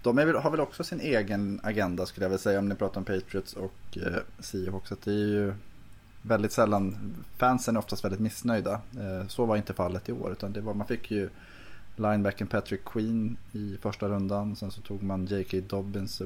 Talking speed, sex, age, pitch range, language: 205 wpm, male, 20-39, 95-105 Hz, Swedish